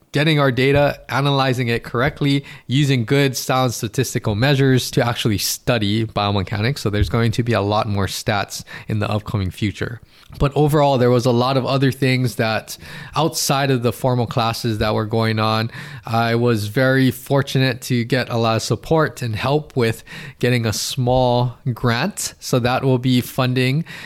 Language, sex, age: English, male, 20-39